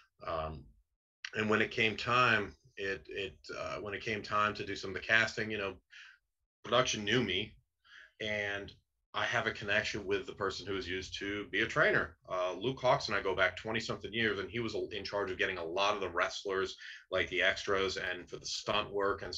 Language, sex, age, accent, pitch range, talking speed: English, male, 30-49, American, 95-115 Hz, 215 wpm